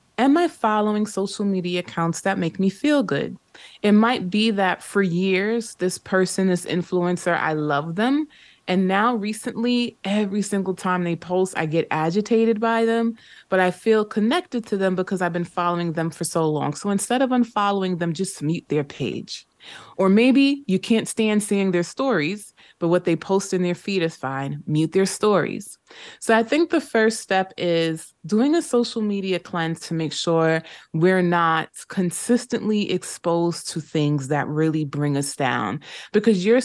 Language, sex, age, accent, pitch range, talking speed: English, female, 20-39, American, 170-220 Hz, 175 wpm